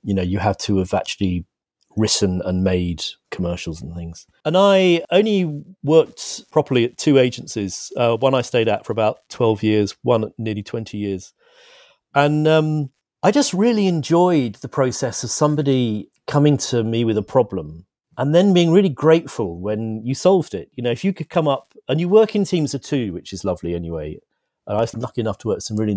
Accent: British